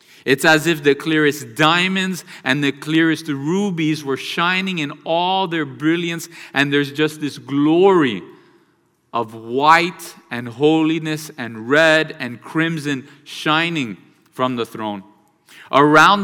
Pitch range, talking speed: 145-175 Hz, 125 wpm